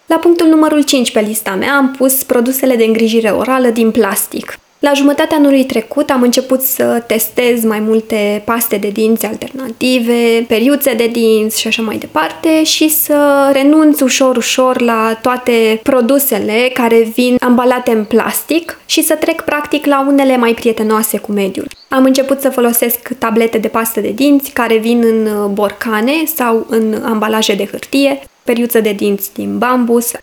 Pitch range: 220-265 Hz